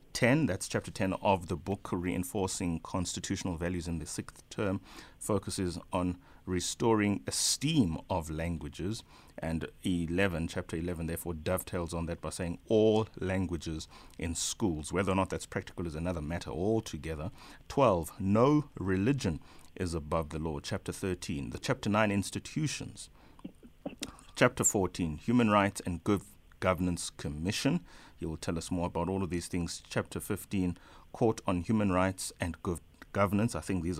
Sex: male